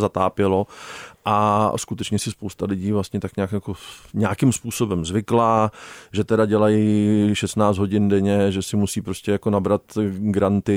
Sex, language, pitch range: male, Czech, 100-110 Hz